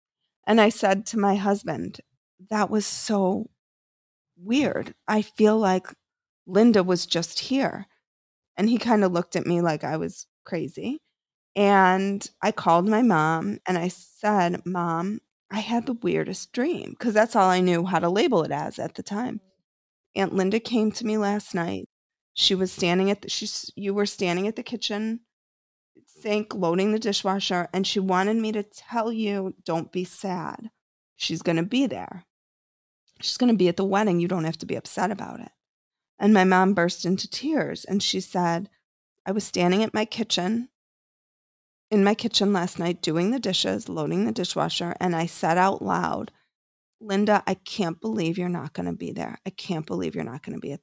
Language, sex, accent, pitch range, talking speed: English, female, American, 180-215 Hz, 185 wpm